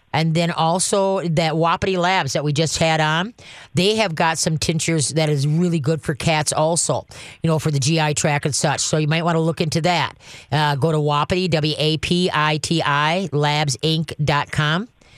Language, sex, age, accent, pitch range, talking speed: English, female, 40-59, American, 150-175 Hz, 180 wpm